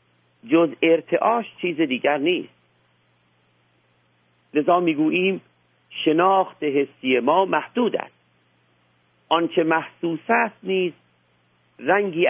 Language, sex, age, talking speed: Persian, male, 50-69, 80 wpm